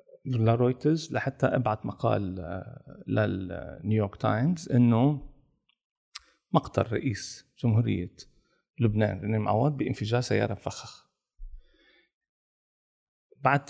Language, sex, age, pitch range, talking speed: Arabic, male, 40-59, 105-135 Hz, 80 wpm